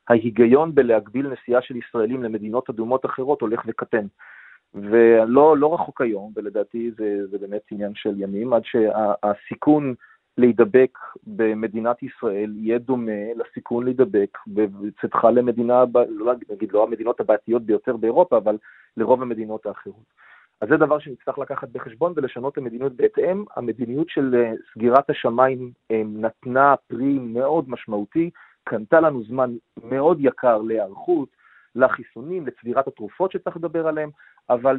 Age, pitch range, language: 40-59, 115-150 Hz, Hebrew